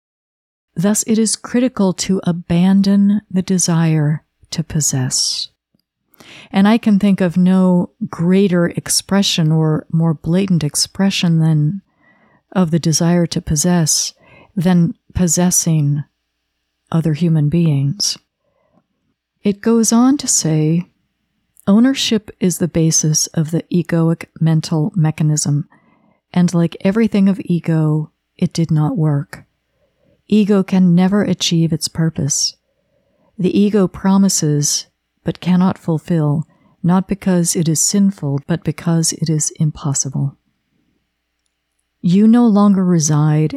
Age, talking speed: 50-69, 115 wpm